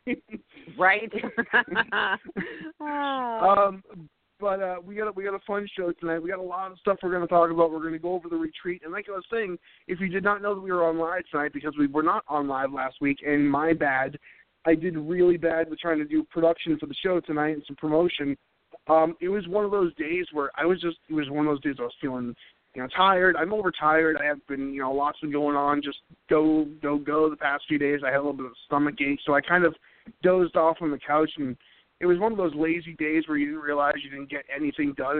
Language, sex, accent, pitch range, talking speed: English, male, American, 145-175 Hz, 255 wpm